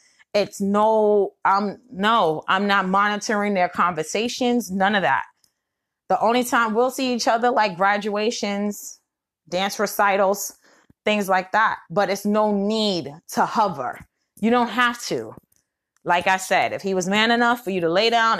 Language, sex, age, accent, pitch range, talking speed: English, female, 20-39, American, 190-230 Hz, 160 wpm